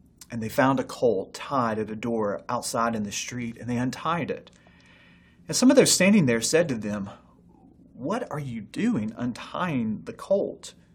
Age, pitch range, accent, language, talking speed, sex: 30-49, 115-165 Hz, American, English, 180 wpm, male